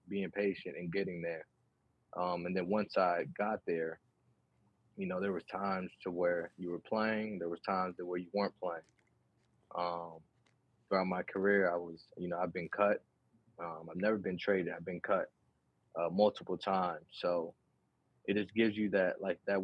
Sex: male